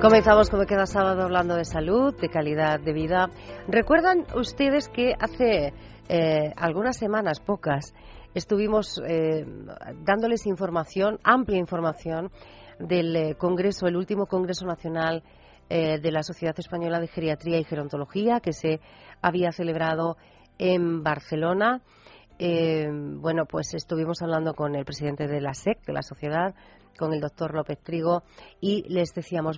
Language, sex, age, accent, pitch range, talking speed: Spanish, female, 40-59, Spanish, 155-195 Hz, 140 wpm